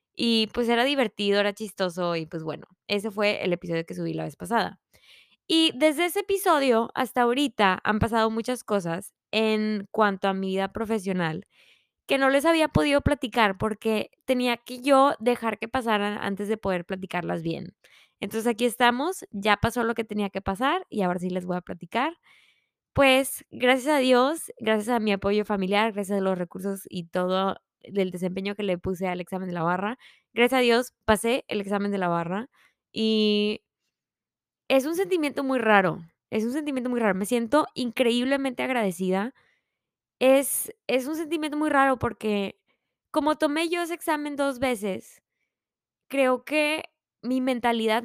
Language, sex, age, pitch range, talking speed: Spanish, female, 20-39, 200-265 Hz, 170 wpm